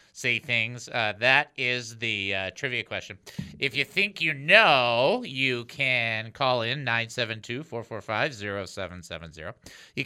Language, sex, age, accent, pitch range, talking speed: English, male, 50-69, American, 115-165 Hz, 120 wpm